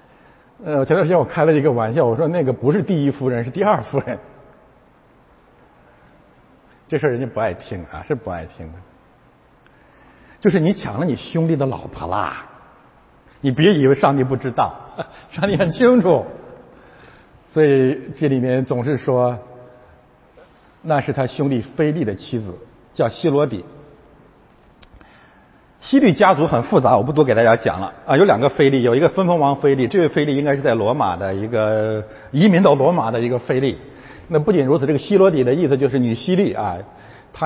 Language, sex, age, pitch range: Chinese, male, 50-69, 125-165 Hz